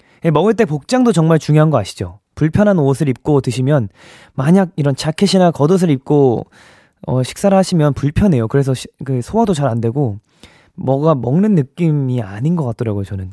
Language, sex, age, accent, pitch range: Korean, male, 20-39, native, 115-160 Hz